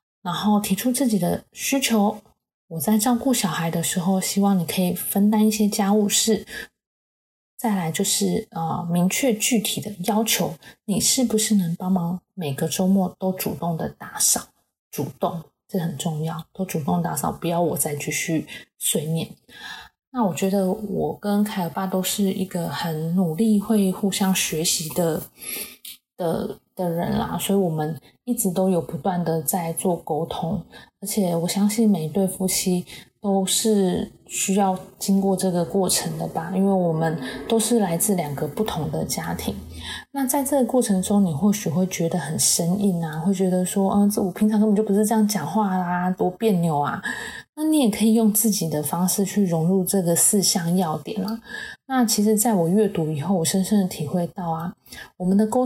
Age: 20-39